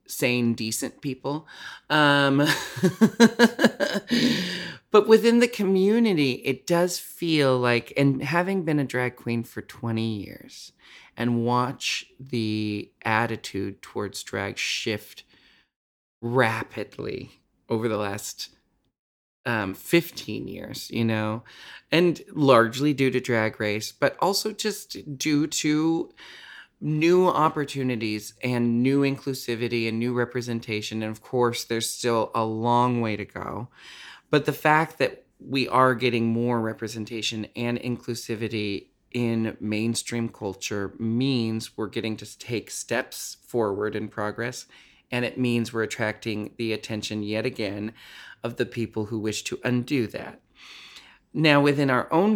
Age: 30-49